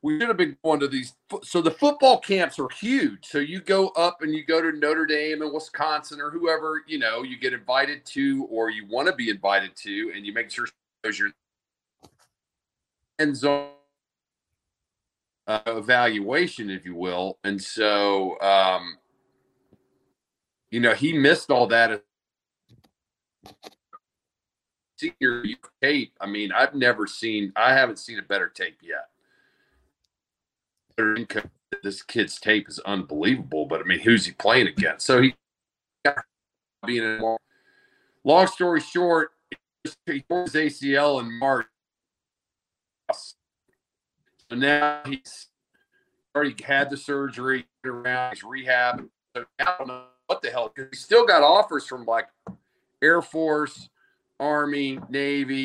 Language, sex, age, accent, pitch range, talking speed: English, male, 40-59, American, 115-160 Hz, 135 wpm